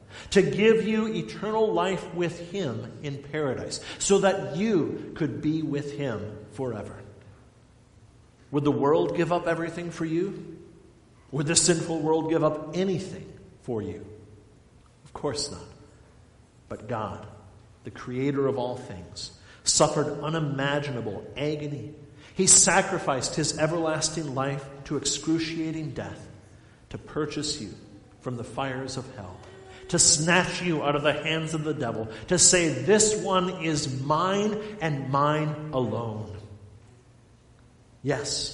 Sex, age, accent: male, 50-69, American